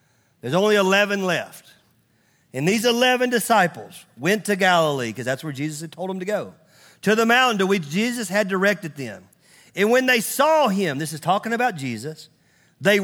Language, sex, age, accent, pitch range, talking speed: English, male, 40-59, American, 175-215 Hz, 185 wpm